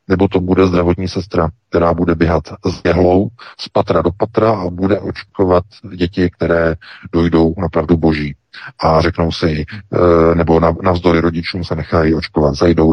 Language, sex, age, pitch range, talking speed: Czech, male, 40-59, 80-95 Hz, 155 wpm